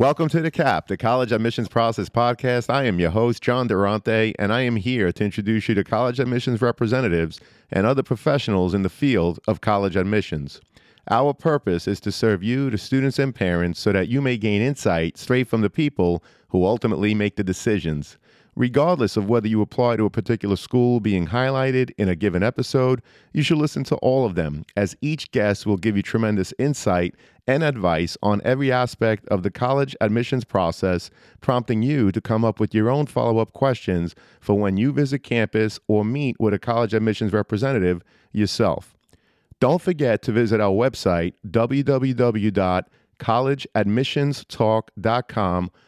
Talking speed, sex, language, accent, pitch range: 170 wpm, male, English, American, 100-130 Hz